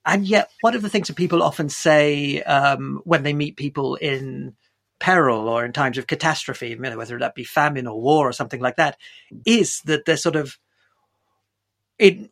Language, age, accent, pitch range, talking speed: English, 40-59, British, 130-180 Hz, 185 wpm